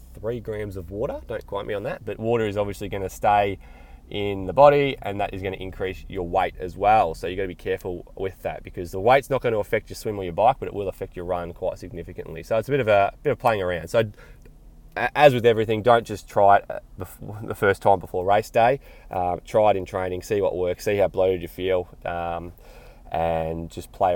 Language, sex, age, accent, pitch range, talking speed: English, male, 20-39, Australian, 95-130 Hz, 245 wpm